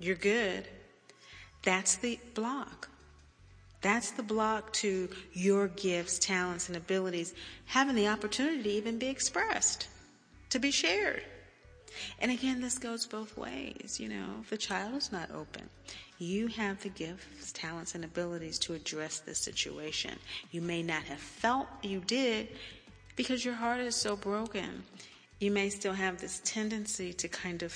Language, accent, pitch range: English, American, 160-215 Hz